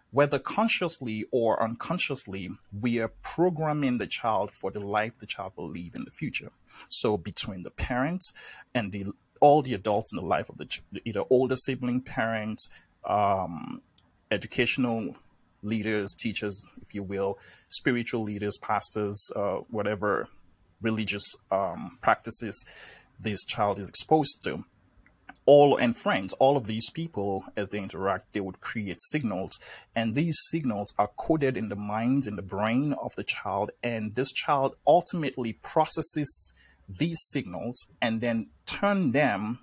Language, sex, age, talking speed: English, male, 30-49, 145 wpm